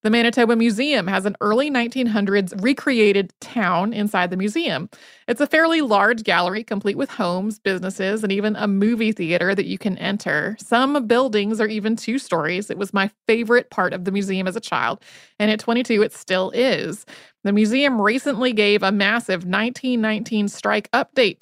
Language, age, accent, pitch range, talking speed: English, 30-49, American, 195-240 Hz, 175 wpm